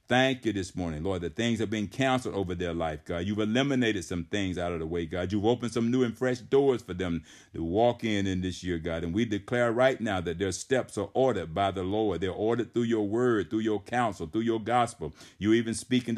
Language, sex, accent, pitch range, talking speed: English, male, American, 90-115 Hz, 245 wpm